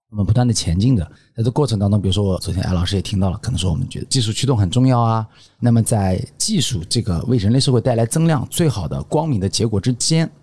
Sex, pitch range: male, 100-135 Hz